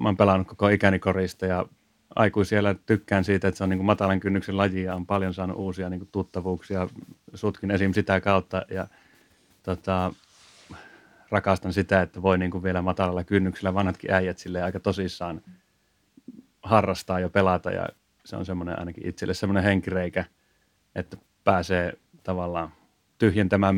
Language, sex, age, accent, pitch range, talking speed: Finnish, male, 30-49, native, 90-100 Hz, 150 wpm